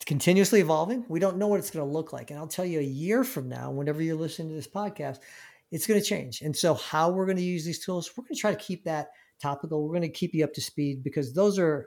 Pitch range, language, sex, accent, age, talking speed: 145-175 Hz, English, male, American, 50-69, 295 wpm